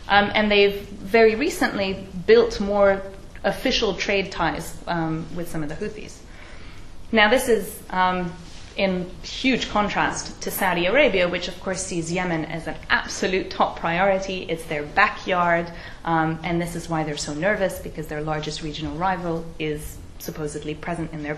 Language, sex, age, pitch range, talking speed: English, female, 30-49, 165-205 Hz, 160 wpm